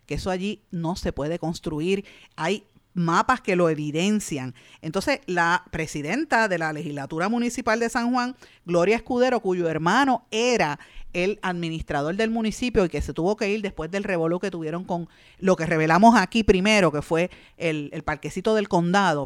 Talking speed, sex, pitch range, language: 170 wpm, female, 165-230 Hz, Spanish